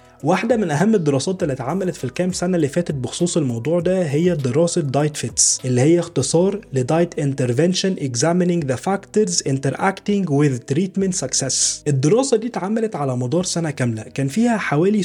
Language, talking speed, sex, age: Arabic, 160 wpm, male, 20-39